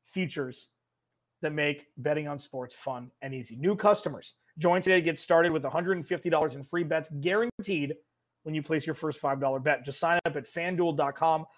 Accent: American